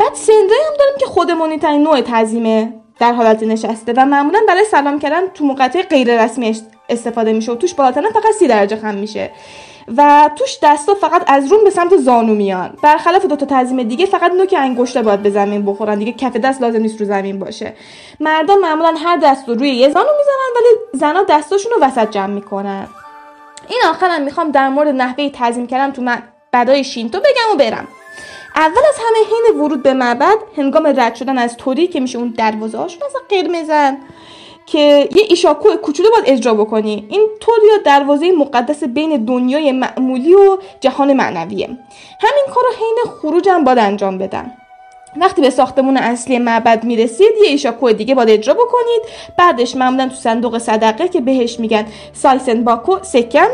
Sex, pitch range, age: female, 235-345 Hz, 20-39